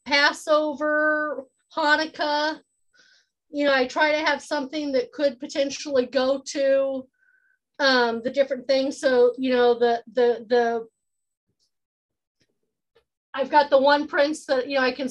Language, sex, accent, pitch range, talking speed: English, female, American, 245-275 Hz, 135 wpm